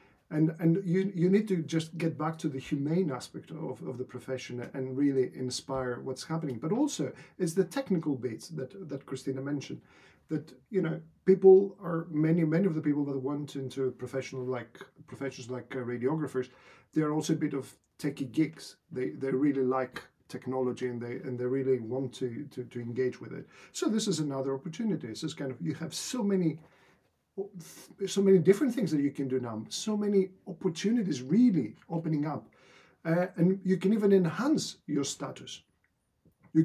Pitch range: 130-170 Hz